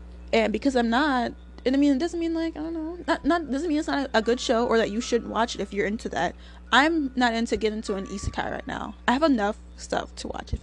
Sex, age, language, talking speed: female, 20-39, English, 275 wpm